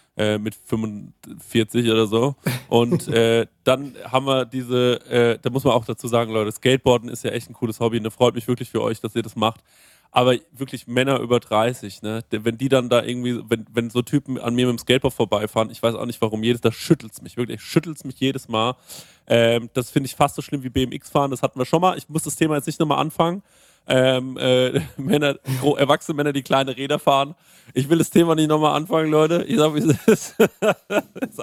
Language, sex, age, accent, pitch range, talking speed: German, male, 20-39, German, 120-145 Hz, 230 wpm